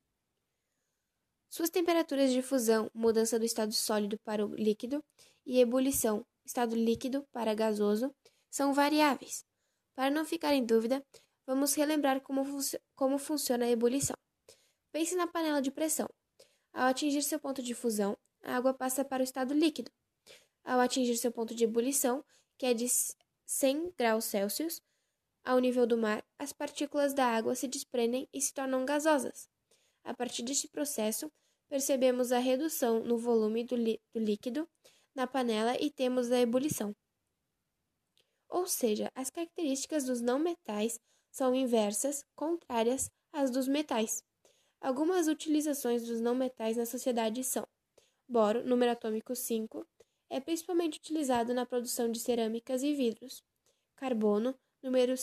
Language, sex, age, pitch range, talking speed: Portuguese, female, 10-29, 235-290 Hz, 140 wpm